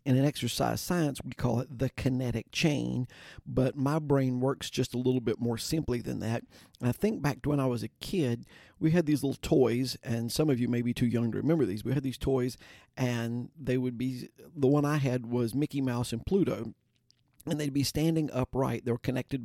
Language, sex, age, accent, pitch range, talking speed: English, male, 50-69, American, 120-140 Hz, 225 wpm